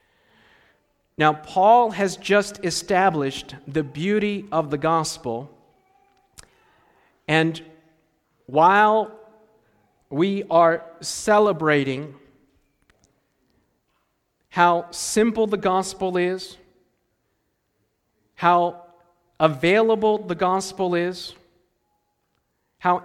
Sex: male